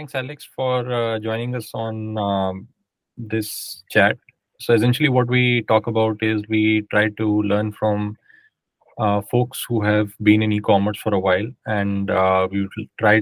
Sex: male